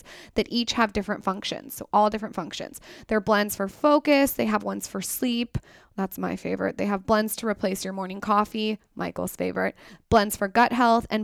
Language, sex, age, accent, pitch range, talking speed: English, female, 10-29, American, 200-230 Hz, 190 wpm